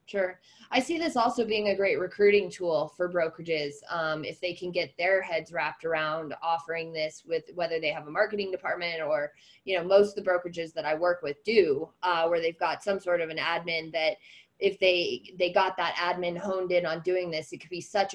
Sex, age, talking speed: female, 20-39, 220 wpm